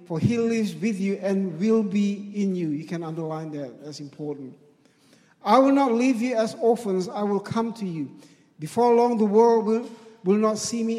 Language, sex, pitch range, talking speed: English, male, 160-220 Hz, 195 wpm